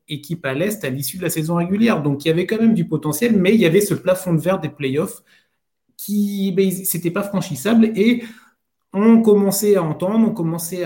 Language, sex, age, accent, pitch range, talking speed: French, male, 30-49, French, 140-190 Hz, 215 wpm